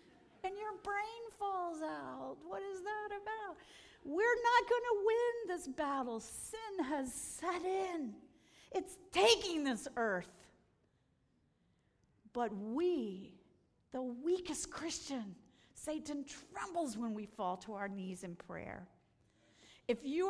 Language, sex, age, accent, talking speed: English, female, 50-69, American, 120 wpm